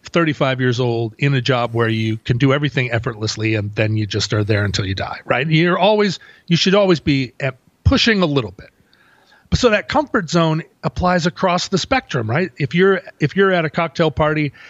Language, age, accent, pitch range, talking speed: English, 40-59, American, 125-170 Hz, 200 wpm